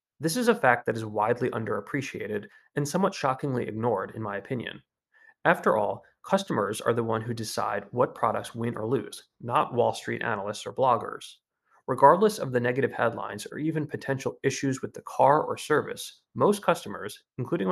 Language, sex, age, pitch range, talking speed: English, male, 30-49, 110-150 Hz, 175 wpm